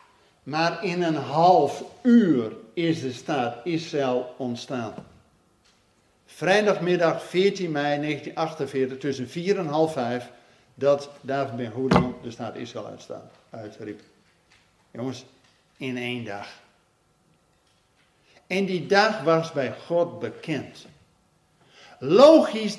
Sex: male